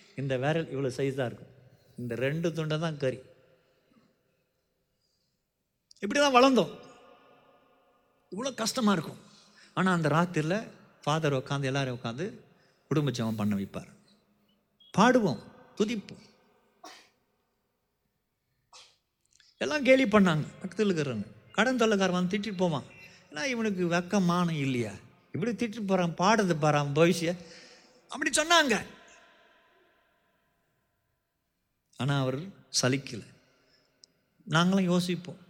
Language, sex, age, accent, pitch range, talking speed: Tamil, male, 50-69, native, 140-215 Hz, 95 wpm